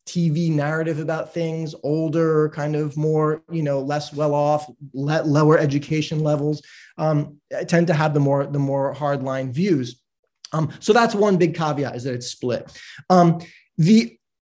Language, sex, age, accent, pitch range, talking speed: English, male, 30-49, American, 130-165 Hz, 160 wpm